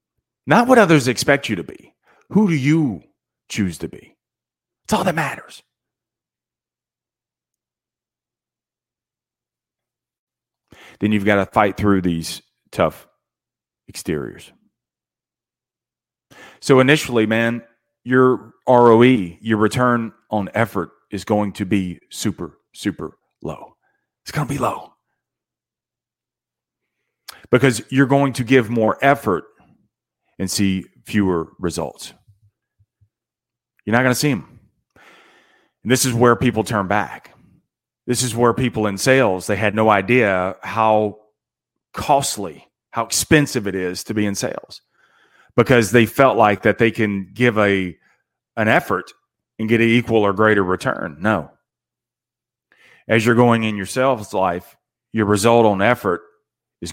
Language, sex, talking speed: English, male, 130 wpm